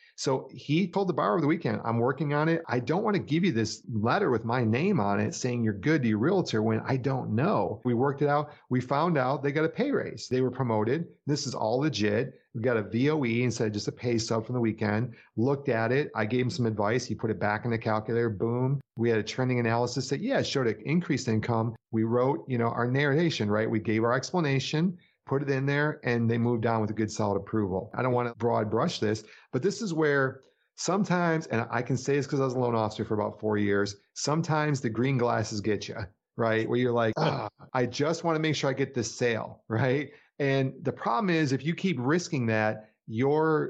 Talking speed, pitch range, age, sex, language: 245 wpm, 110-145 Hz, 40-59, male, English